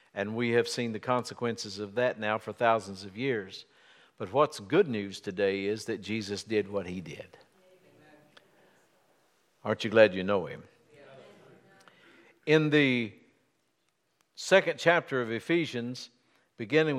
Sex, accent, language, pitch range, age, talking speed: male, American, English, 120-160 Hz, 60-79, 135 wpm